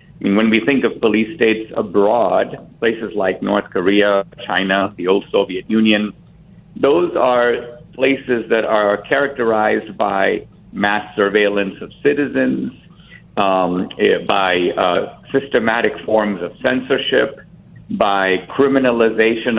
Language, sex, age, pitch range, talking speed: English, male, 50-69, 110-145 Hz, 115 wpm